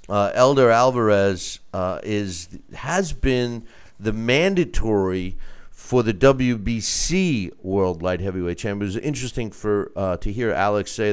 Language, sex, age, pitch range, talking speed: English, male, 50-69, 100-130 Hz, 130 wpm